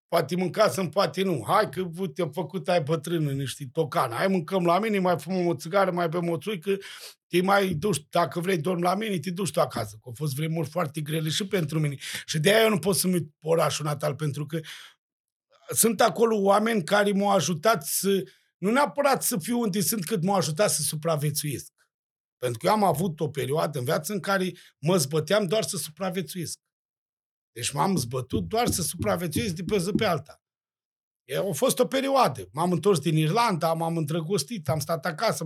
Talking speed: 195 wpm